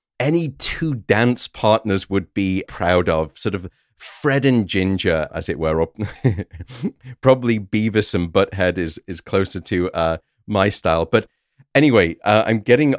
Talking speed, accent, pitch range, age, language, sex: 150 wpm, British, 95-135 Hz, 40-59, English, male